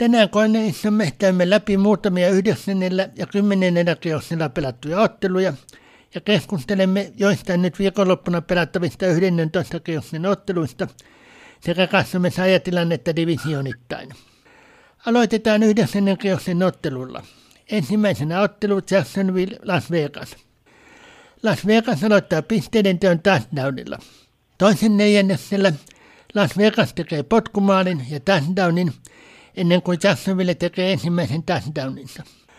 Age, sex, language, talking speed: 60-79, male, Finnish, 95 wpm